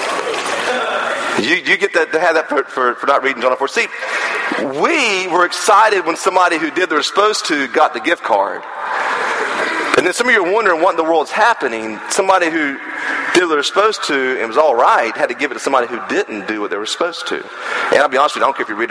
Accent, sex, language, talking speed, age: American, male, English, 250 wpm, 40-59